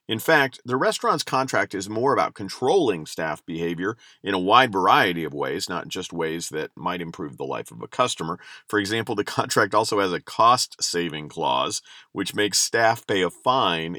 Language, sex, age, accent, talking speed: English, male, 50-69, American, 185 wpm